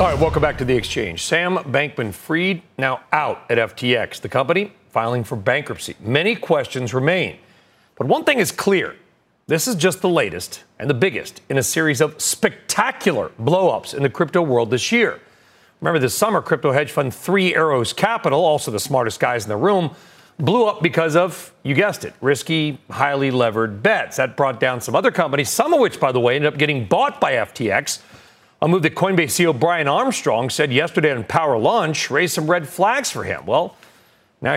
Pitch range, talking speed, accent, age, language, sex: 125-175 Hz, 195 wpm, American, 40-59, English, male